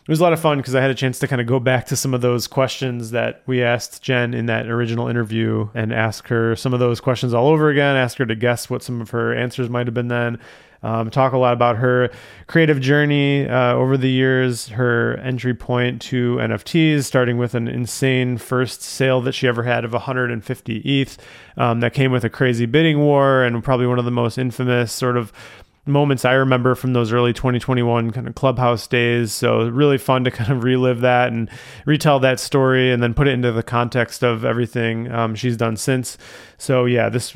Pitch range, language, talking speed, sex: 115-130 Hz, English, 220 wpm, male